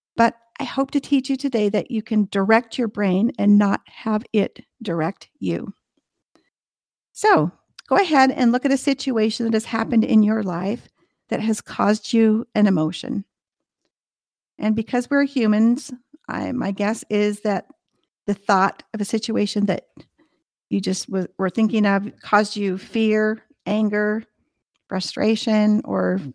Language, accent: English, American